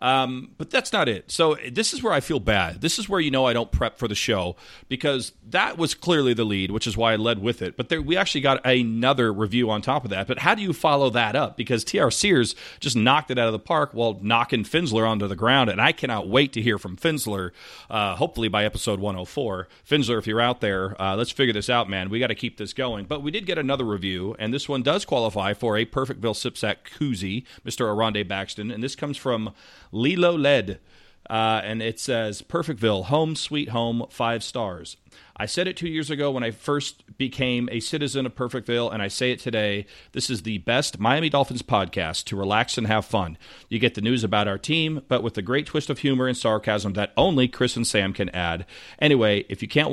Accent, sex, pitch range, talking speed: American, male, 105-135 Hz, 230 wpm